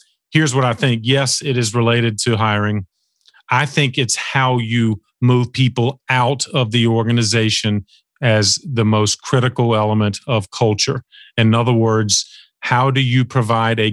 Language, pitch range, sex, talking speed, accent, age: English, 115-135 Hz, male, 155 wpm, American, 40-59